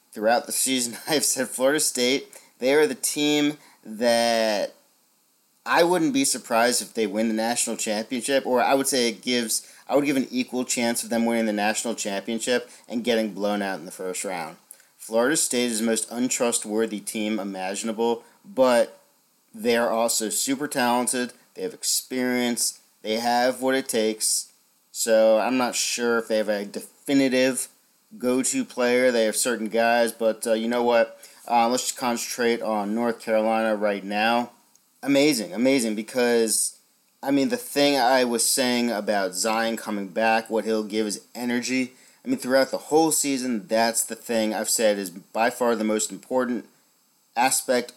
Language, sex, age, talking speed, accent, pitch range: English, male, 40-59, 170 wpm, American, 110-130 Hz